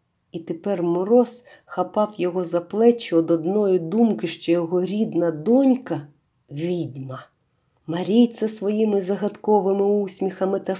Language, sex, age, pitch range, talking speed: Ukrainian, female, 50-69, 160-200 Hz, 115 wpm